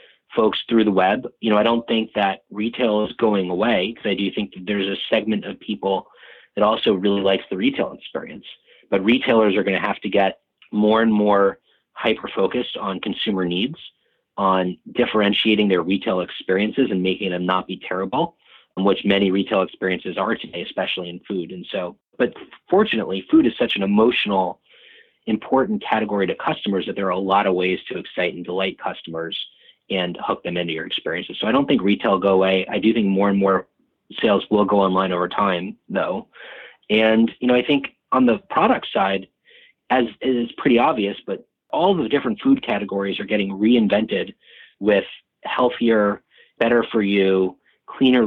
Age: 30-49